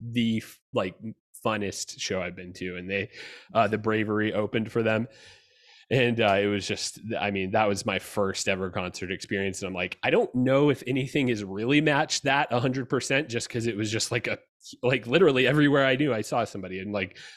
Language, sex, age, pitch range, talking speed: English, male, 20-39, 100-125 Hz, 205 wpm